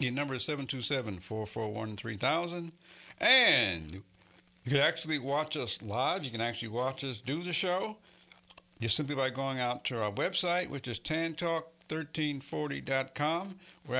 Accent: American